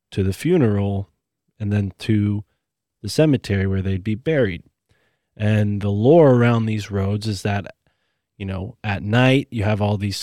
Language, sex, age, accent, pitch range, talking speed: English, male, 20-39, American, 100-120 Hz, 165 wpm